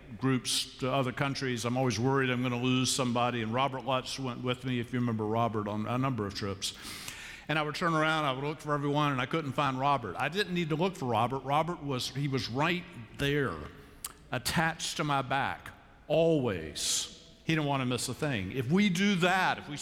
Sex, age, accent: male, 50-69, American